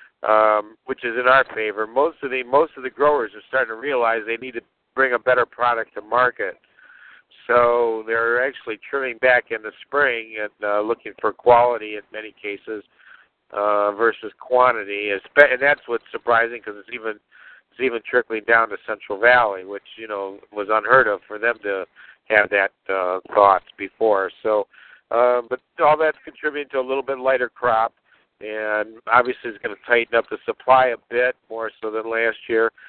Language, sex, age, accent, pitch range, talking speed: English, male, 50-69, American, 105-130 Hz, 185 wpm